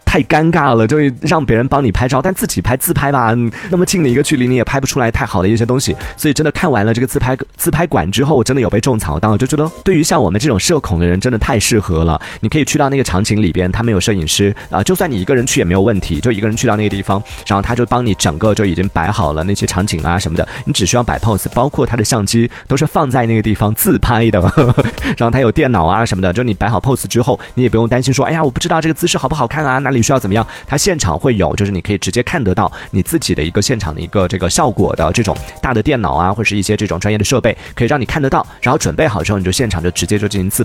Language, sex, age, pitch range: Chinese, male, 30-49, 95-130 Hz